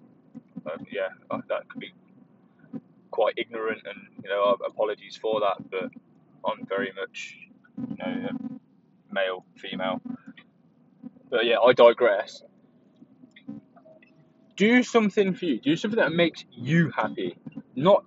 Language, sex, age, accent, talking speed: English, male, 20-39, British, 125 wpm